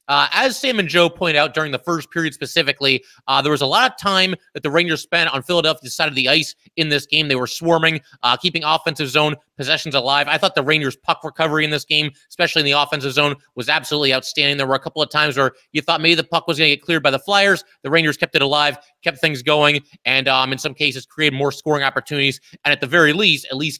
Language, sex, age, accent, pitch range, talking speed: English, male, 30-49, American, 140-165 Hz, 255 wpm